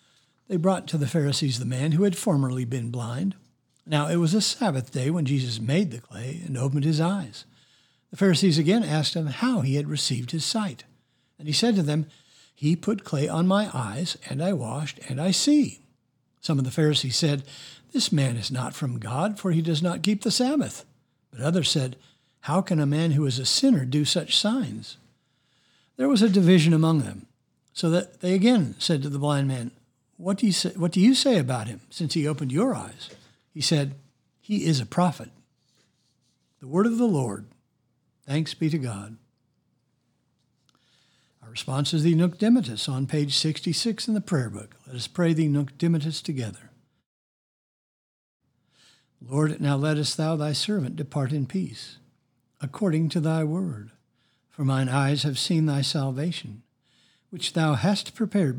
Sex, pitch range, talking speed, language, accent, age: male, 130-175 Hz, 180 wpm, English, American, 60-79